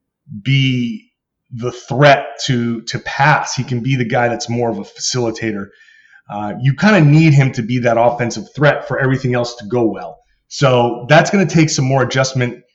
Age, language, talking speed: 30-49, English, 195 wpm